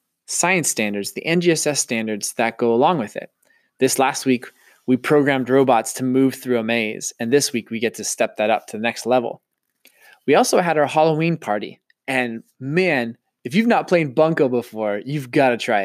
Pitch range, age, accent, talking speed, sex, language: 120-150 Hz, 20-39, American, 195 wpm, male, English